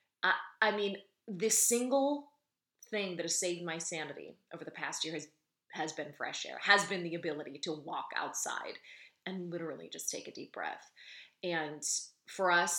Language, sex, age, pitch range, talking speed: English, female, 30-49, 160-205 Hz, 170 wpm